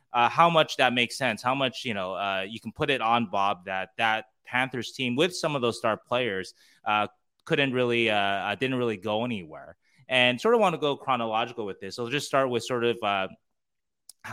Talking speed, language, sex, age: 220 wpm, English, male, 20-39